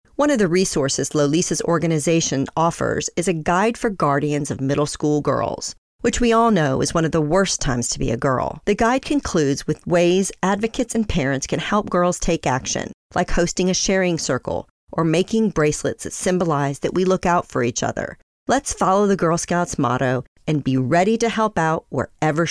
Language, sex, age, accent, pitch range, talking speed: English, female, 40-59, American, 150-195 Hz, 195 wpm